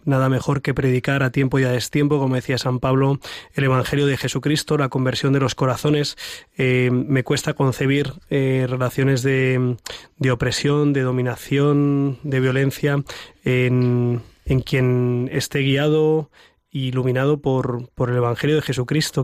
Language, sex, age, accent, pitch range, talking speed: Spanish, male, 20-39, Spanish, 125-140 Hz, 145 wpm